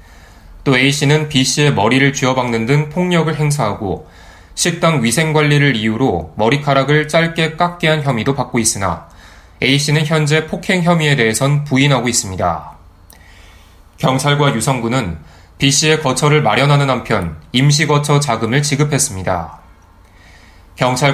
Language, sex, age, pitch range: Korean, male, 20-39, 100-150 Hz